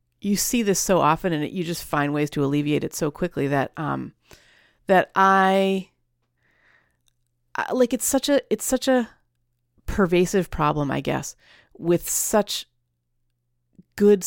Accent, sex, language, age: American, female, English, 40-59